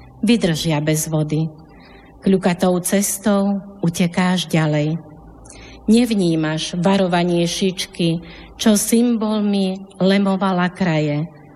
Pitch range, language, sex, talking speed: 160-200 Hz, Slovak, female, 75 wpm